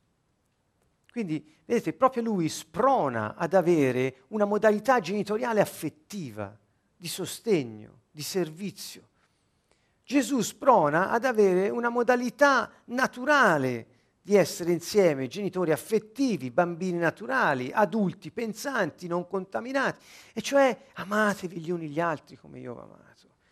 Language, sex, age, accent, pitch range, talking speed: Italian, male, 50-69, native, 130-200 Hz, 110 wpm